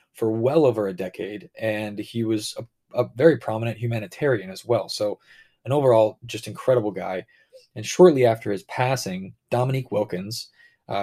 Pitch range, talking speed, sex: 105-125 Hz, 160 wpm, male